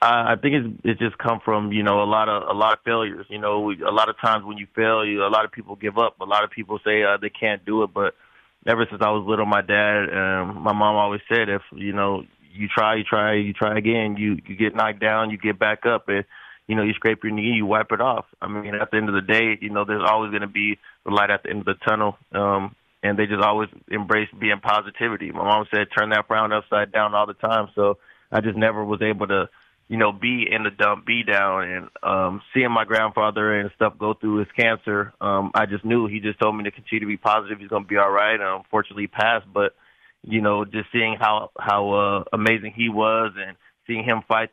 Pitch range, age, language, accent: 105-110 Hz, 20-39, English, American